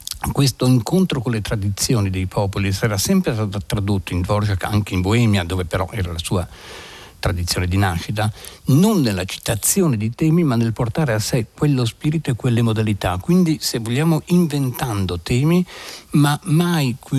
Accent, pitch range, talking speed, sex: native, 100-130 Hz, 160 wpm, male